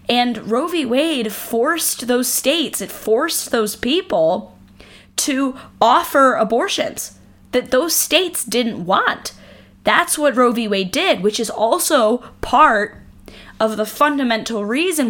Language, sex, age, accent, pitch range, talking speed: English, female, 10-29, American, 210-300 Hz, 130 wpm